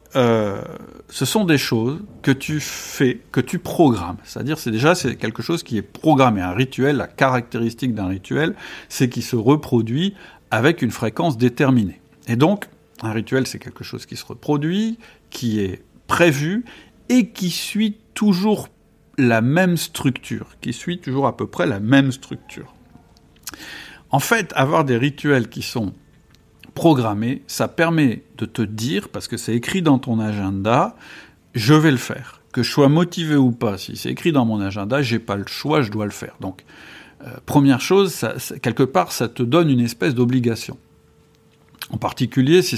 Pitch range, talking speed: 115-155 Hz, 180 wpm